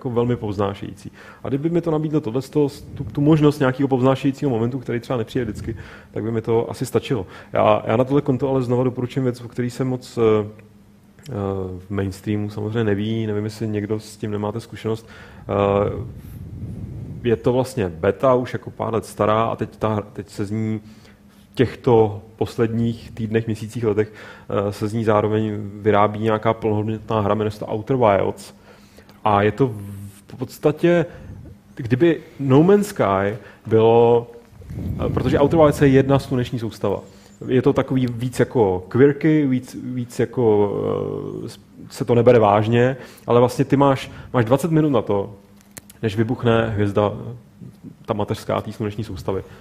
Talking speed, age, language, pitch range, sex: 155 wpm, 30-49, Czech, 105-130 Hz, male